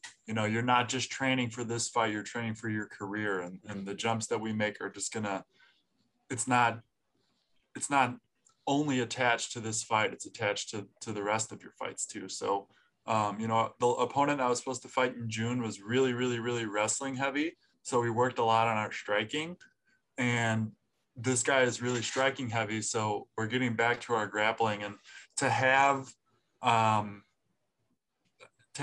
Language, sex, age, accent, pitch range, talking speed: English, male, 20-39, American, 110-125 Hz, 185 wpm